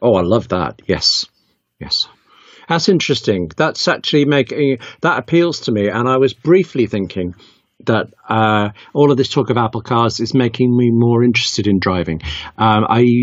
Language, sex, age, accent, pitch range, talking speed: English, male, 50-69, British, 100-125 Hz, 170 wpm